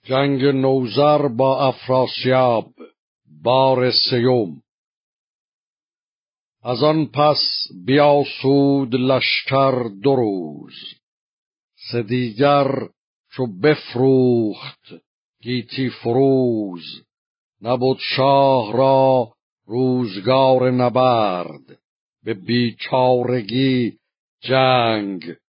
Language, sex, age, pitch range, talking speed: Persian, male, 60-79, 120-135 Hz, 60 wpm